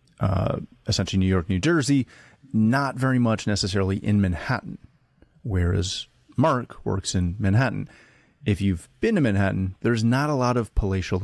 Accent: American